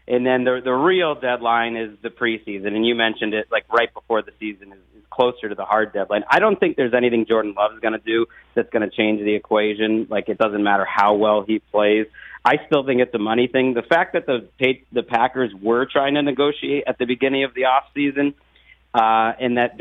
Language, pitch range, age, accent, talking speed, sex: English, 110-130 Hz, 40-59, American, 230 wpm, male